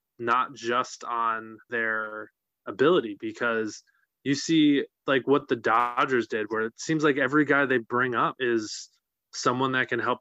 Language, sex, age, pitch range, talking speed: English, male, 20-39, 115-145 Hz, 160 wpm